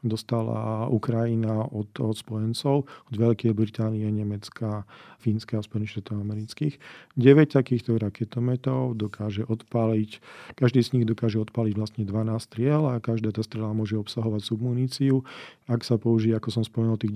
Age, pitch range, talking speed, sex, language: 40-59, 110-125 Hz, 135 wpm, male, Slovak